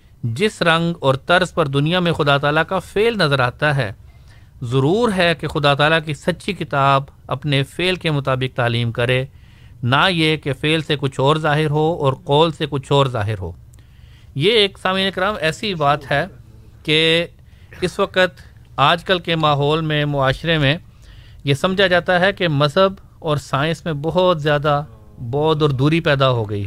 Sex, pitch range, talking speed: male, 135-170 Hz, 175 wpm